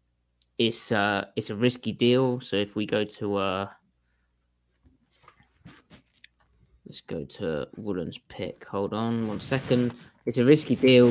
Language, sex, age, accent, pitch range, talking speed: English, male, 20-39, British, 105-120 Hz, 135 wpm